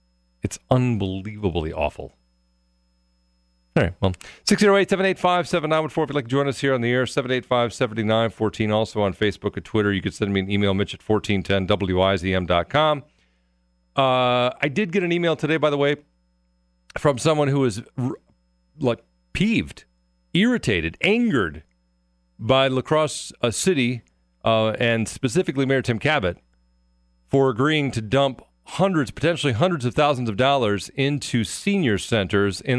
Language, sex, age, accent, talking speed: English, male, 40-59, American, 135 wpm